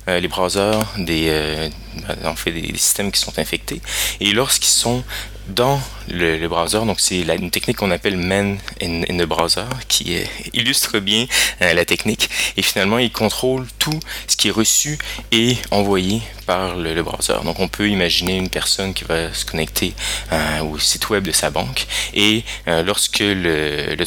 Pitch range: 85-110 Hz